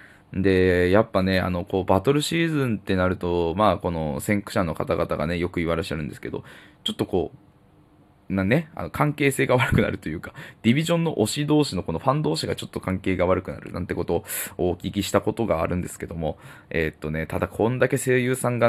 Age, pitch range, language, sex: 20-39, 90-120 Hz, Japanese, male